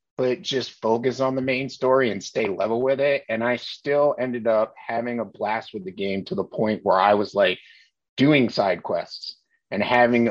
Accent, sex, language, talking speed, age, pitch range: American, male, English, 205 wpm, 30-49, 95-130 Hz